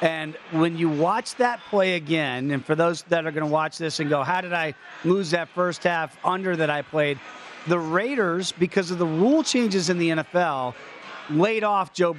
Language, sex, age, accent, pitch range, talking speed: English, male, 40-59, American, 170-210 Hz, 205 wpm